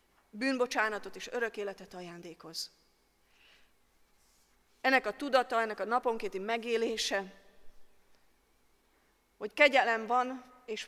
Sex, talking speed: female, 90 wpm